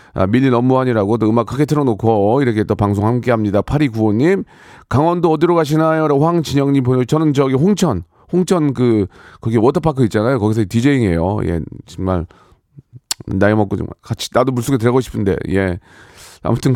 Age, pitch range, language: 40-59, 105-145 Hz, Korean